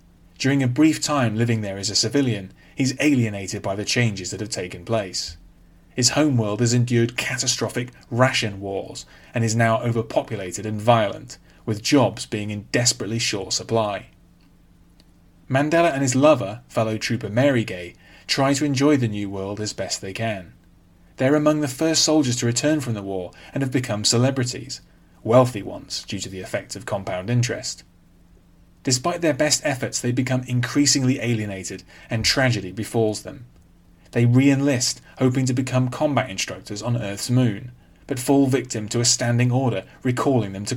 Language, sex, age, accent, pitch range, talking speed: English, male, 30-49, British, 95-130 Hz, 165 wpm